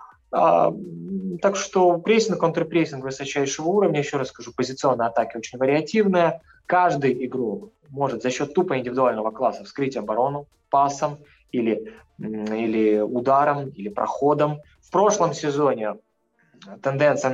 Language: Russian